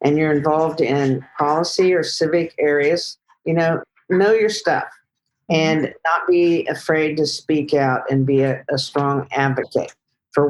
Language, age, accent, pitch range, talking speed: English, 50-69, American, 150-190 Hz, 155 wpm